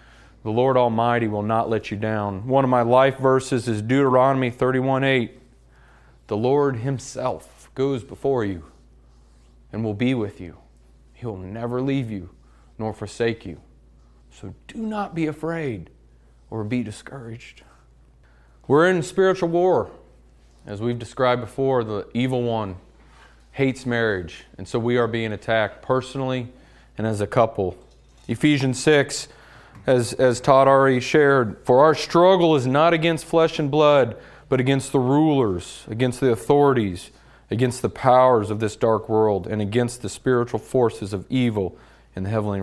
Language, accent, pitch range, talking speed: English, American, 95-135 Hz, 150 wpm